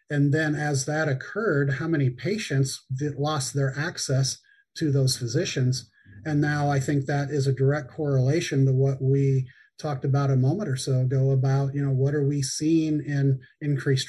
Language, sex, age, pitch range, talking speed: English, male, 40-59, 135-155 Hz, 180 wpm